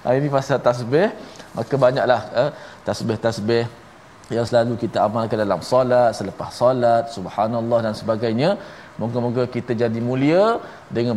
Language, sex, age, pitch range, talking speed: Malayalam, male, 20-39, 115-140 Hz, 130 wpm